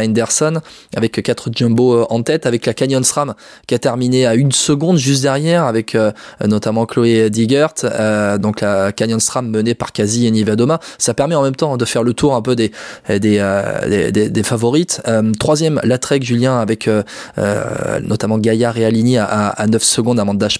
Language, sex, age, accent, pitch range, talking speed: French, male, 20-39, French, 110-135 Hz, 200 wpm